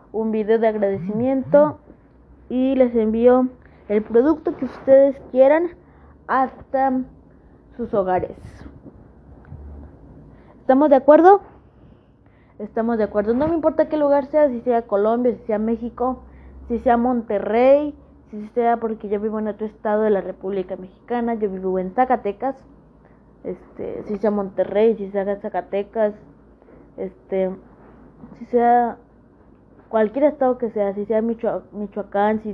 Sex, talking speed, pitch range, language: female, 130 wpm, 200-240 Hz, Spanish